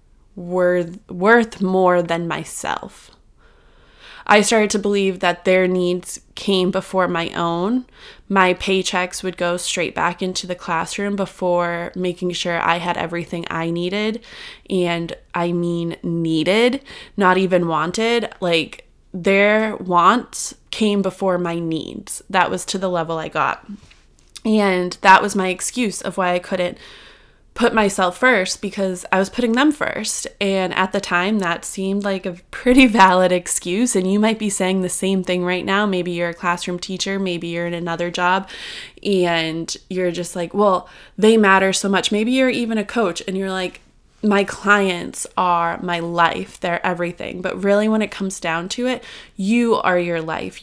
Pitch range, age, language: 175-210 Hz, 20-39, English